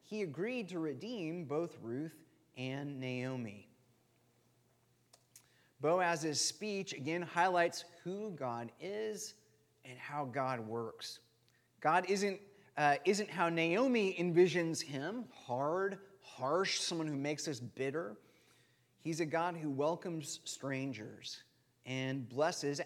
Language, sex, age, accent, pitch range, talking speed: English, male, 30-49, American, 130-180 Hz, 110 wpm